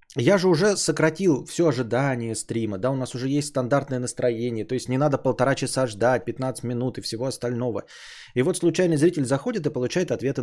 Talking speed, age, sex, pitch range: 195 wpm, 20-39, male, 120-165 Hz